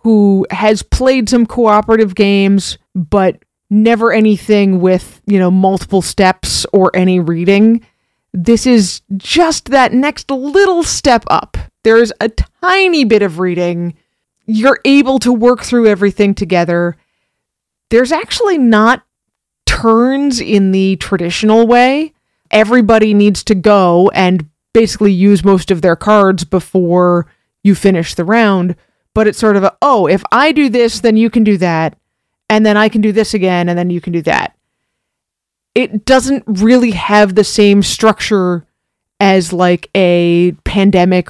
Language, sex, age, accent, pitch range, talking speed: English, female, 20-39, American, 185-225 Hz, 150 wpm